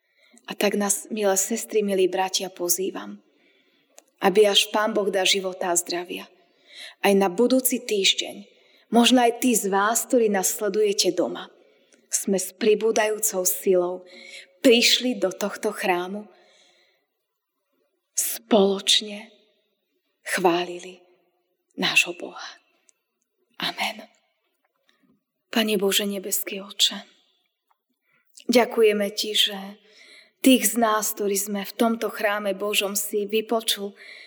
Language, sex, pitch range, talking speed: Slovak, female, 200-220 Hz, 105 wpm